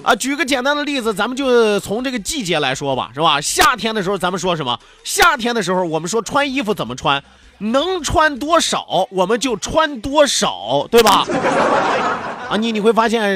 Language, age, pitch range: Chinese, 30-49, 195-280 Hz